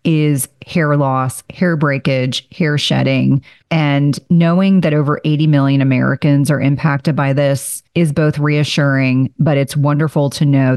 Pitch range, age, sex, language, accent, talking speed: 140-165 Hz, 40-59, female, English, American, 145 wpm